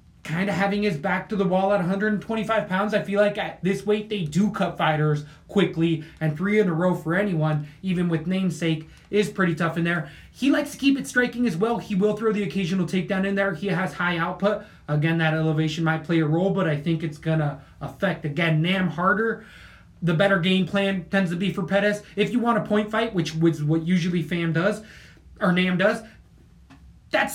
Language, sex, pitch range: English, male, 160-205 Hz